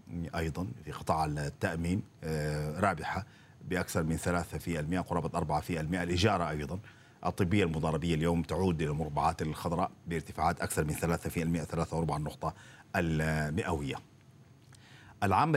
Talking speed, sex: 110 wpm, male